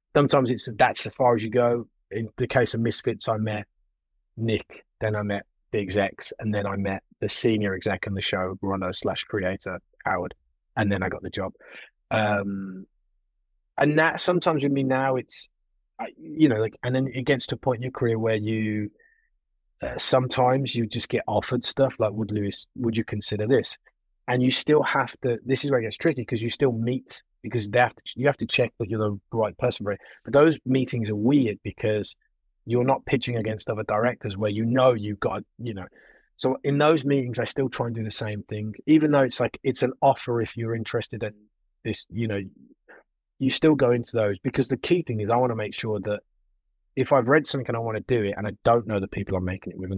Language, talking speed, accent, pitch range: English, 230 wpm, British, 105-130 Hz